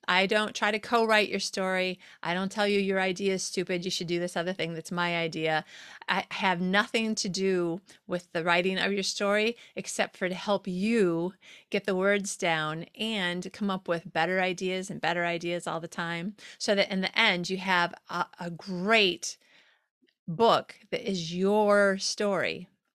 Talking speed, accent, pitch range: 185 wpm, American, 175-210 Hz